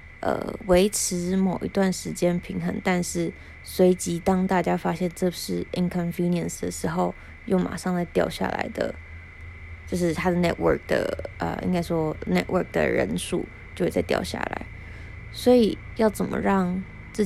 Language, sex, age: Chinese, female, 20-39